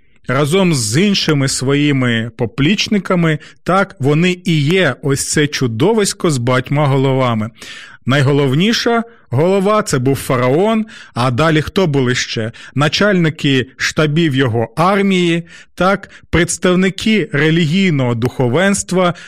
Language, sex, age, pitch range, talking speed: Ukrainian, male, 30-49, 135-190 Hz, 105 wpm